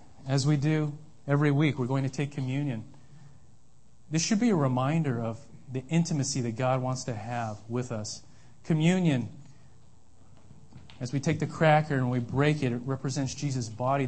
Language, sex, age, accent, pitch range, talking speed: English, male, 40-59, American, 120-145 Hz, 165 wpm